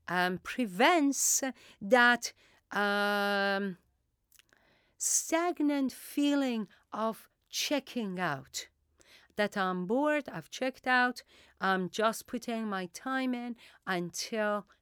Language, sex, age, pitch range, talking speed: English, female, 40-59, 180-260 Hz, 90 wpm